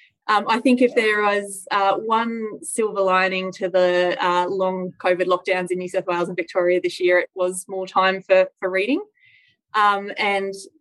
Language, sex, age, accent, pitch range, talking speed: English, female, 20-39, Australian, 185-225 Hz, 185 wpm